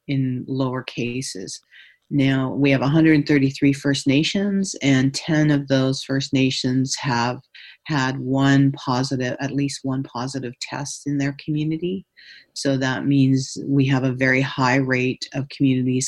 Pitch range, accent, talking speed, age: 130-140 Hz, American, 140 wpm, 50-69